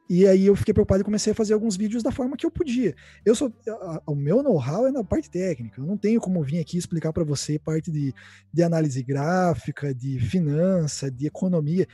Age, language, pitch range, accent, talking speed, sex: 20-39, Portuguese, 155-210 Hz, Brazilian, 225 wpm, male